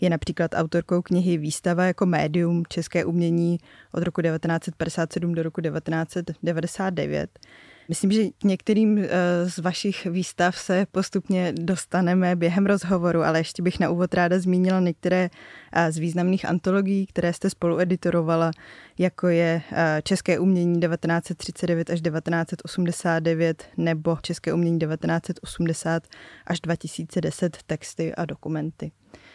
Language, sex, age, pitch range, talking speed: Czech, female, 20-39, 170-190 Hz, 115 wpm